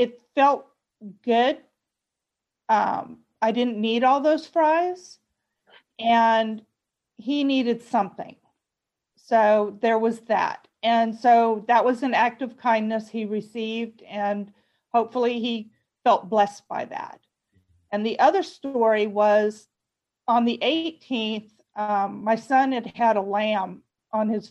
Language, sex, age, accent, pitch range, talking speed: English, female, 40-59, American, 220-265 Hz, 125 wpm